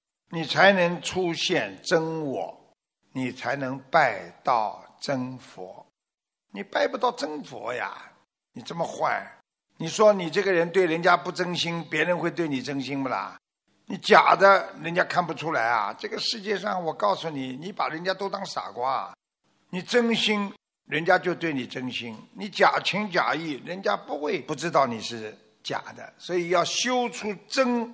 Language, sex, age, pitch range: Chinese, male, 60-79, 150-205 Hz